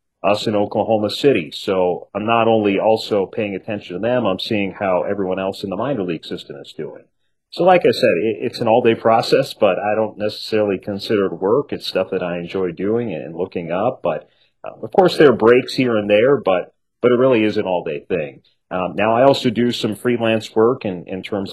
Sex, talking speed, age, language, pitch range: male, 220 wpm, 40-59, English, 90-110 Hz